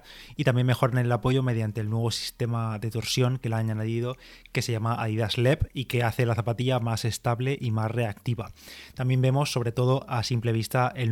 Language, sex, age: Spanish, male, 20-39